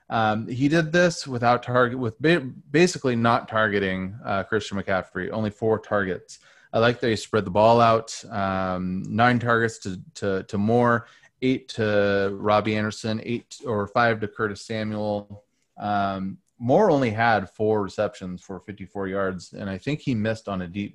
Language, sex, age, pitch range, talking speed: English, male, 30-49, 100-115 Hz, 165 wpm